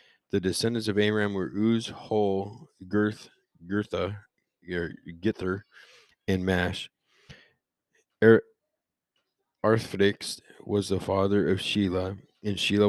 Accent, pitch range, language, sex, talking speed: American, 95-110 Hz, English, male, 100 wpm